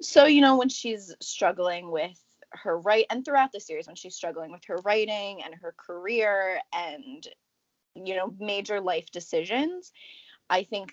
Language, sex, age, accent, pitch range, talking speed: English, female, 20-39, American, 180-265 Hz, 165 wpm